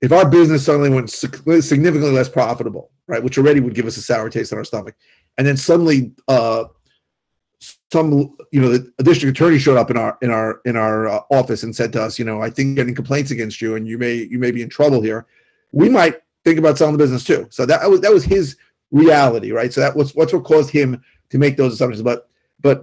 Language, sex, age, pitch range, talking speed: English, male, 30-49, 125-155 Hz, 235 wpm